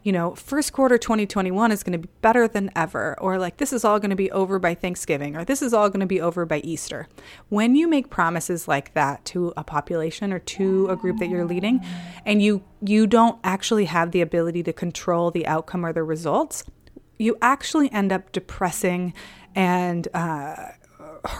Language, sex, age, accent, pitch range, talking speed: English, female, 30-49, American, 170-220 Hz, 200 wpm